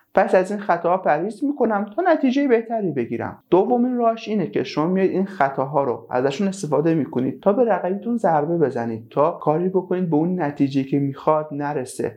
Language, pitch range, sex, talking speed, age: Persian, 140-185 Hz, male, 180 wpm, 30-49